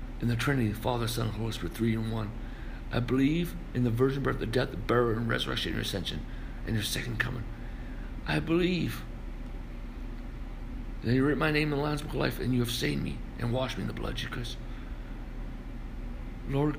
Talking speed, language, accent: 200 wpm, English, American